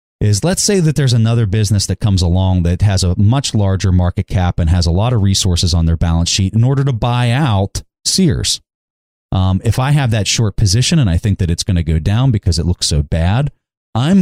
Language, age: English, 30-49